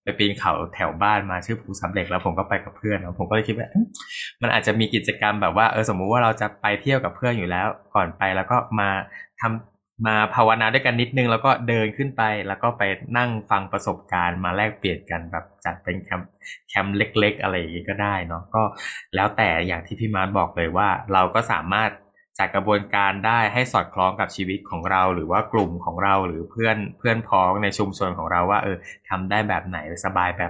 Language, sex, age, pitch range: Thai, male, 20-39, 95-110 Hz